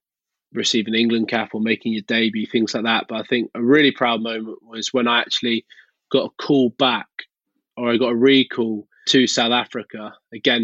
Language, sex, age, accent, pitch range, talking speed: English, male, 20-39, British, 115-135 Hz, 190 wpm